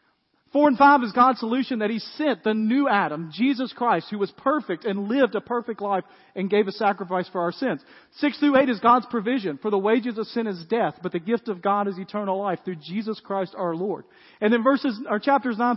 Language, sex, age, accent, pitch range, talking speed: English, male, 40-59, American, 210-275 Hz, 230 wpm